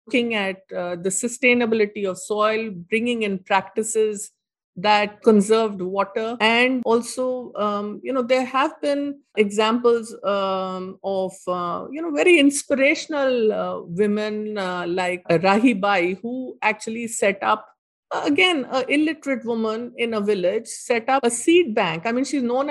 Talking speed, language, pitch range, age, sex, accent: 155 wpm, English, 210-260 Hz, 50-69, female, Indian